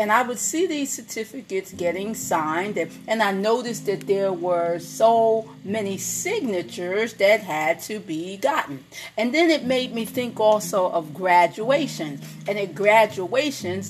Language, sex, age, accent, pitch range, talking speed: English, female, 40-59, American, 190-235 Hz, 145 wpm